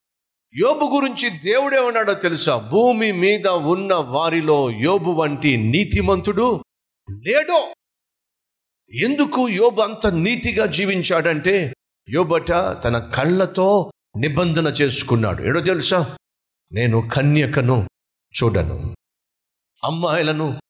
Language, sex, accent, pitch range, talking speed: Telugu, male, native, 135-175 Hz, 85 wpm